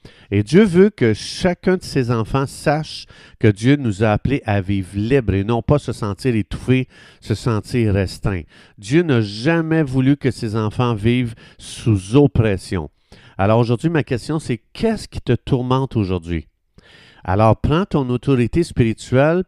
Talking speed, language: 155 wpm, French